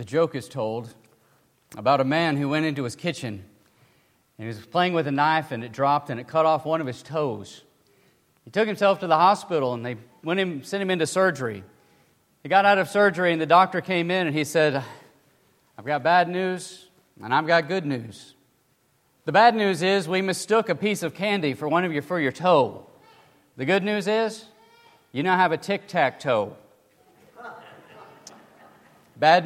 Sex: male